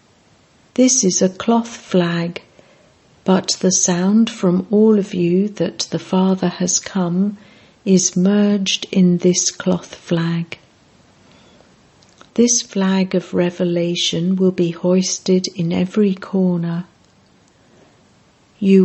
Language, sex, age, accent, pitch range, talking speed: English, female, 60-79, British, 180-205 Hz, 110 wpm